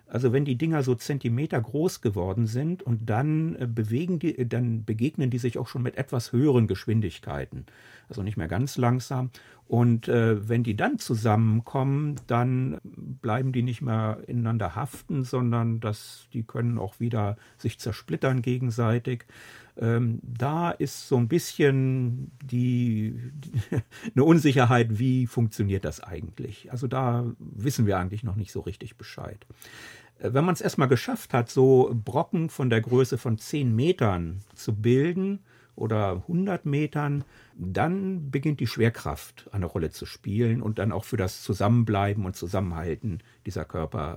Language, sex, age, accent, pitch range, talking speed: German, male, 50-69, German, 110-130 Hz, 145 wpm